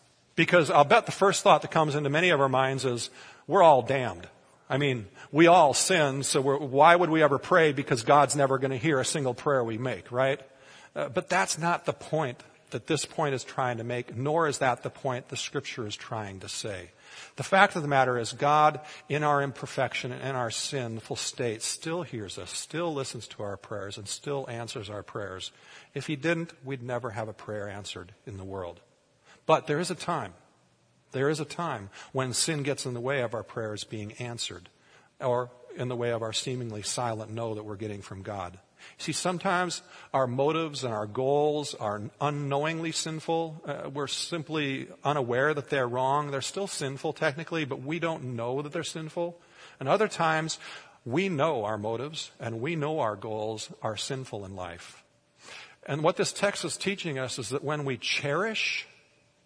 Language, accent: English, American